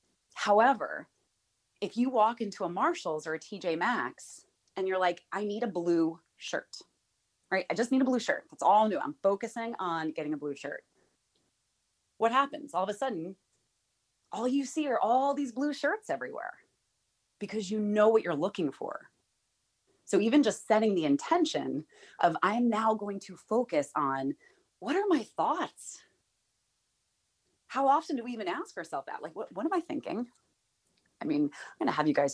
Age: 30-49